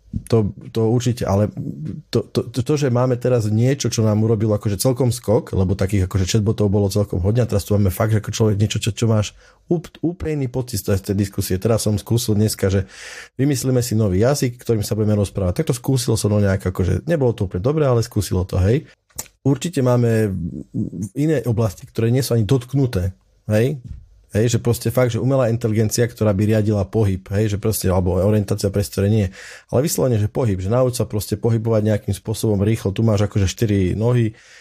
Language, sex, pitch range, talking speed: Slovak, male, 100-125 Hz, 195 wpm